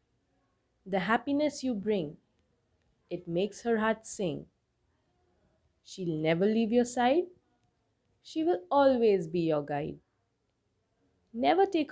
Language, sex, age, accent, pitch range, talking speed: English, female, 20-39, Indian, 150-230 Hz, 110 wpm